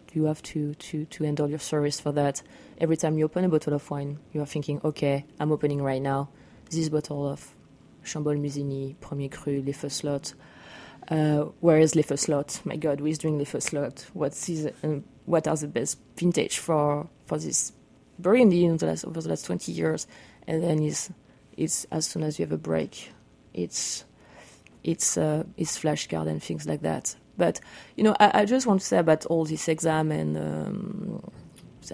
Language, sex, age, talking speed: English, female, 30-49, 180 wpm